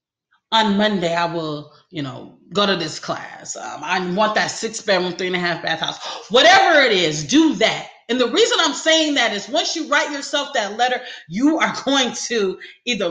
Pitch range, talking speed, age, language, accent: 200-275 Hz, 205 wpm, 30-49, English, American